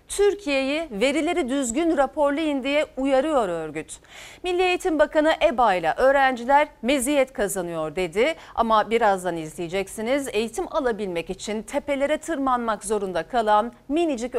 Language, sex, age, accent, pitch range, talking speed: Turkish, female, 40-59, native, 215-305 Hz, 115 wpm